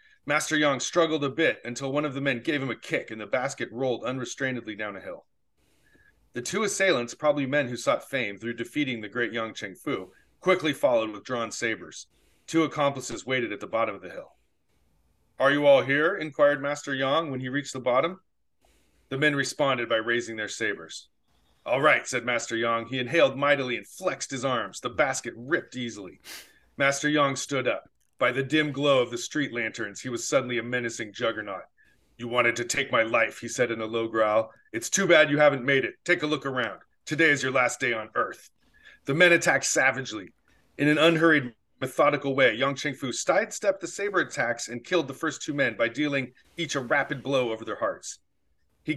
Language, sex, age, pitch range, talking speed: English, male, 40-59, 120-150 Hz, 200 wpm